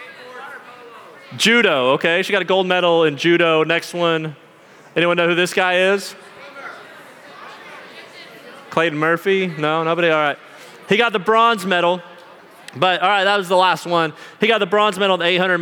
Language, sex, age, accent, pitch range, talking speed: English, male, 30-49, American, 140-170 Hz, 165 wpm